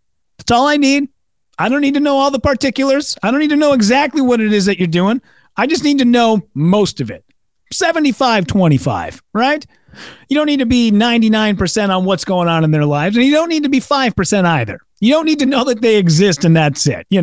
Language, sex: English, male